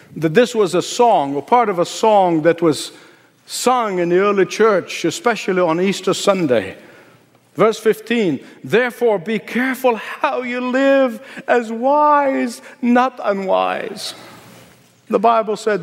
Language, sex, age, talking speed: English, male, 60-79, 135 wpm